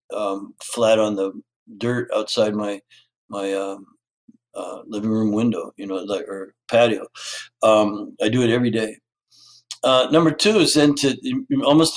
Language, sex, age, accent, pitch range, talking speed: English, male, 60-79, American, 110-140 Hz, 150 wpm